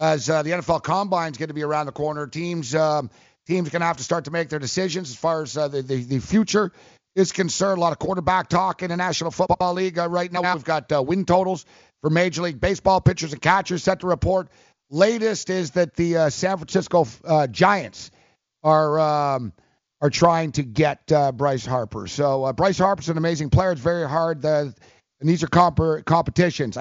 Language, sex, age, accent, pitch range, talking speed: English, male, 50-69, American, 145-185 Hz, 215 wpm